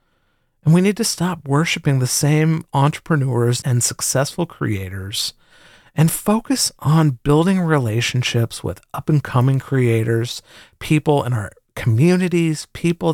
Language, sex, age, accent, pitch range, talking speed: English, male, 40-59, American, 115-150 Hz, 115 wpm